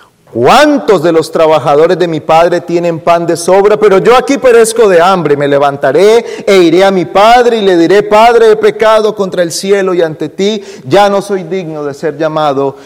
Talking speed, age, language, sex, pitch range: 200 wpm, 40-59, Spanish, male, 160-220 Hz